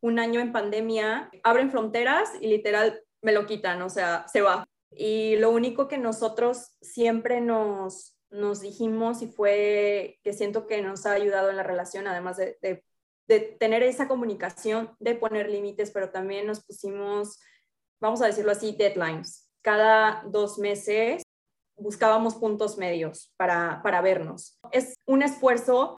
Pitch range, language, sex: 200-230 Hz, Spanish, female